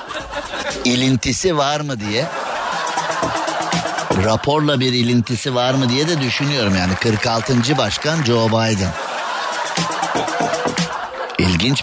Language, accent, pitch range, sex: Turkish, native, 95-140 Hz, male